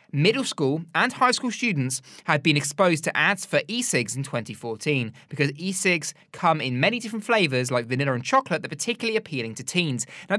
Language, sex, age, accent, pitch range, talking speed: English, male, 20-39, British, 135-190 Hz, 190 wpm